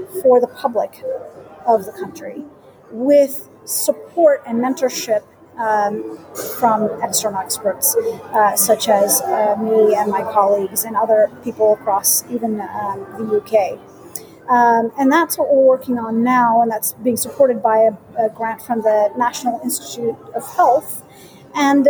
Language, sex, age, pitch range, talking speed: English, female, 40-59, 225-290 Hz, 145 wpm